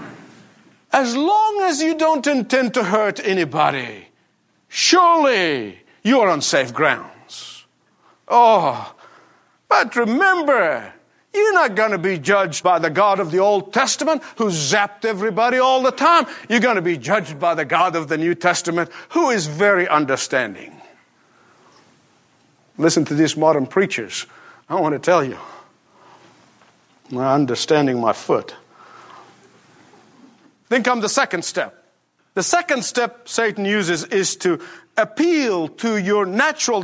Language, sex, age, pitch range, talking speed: English, male, 50-69, 170-260 Hz, 135 wpm